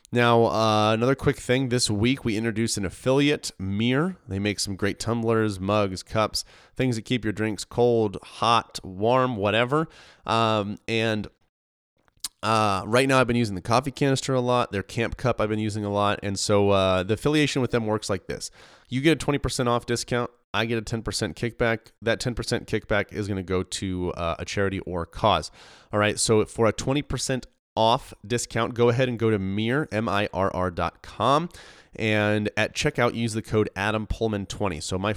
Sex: male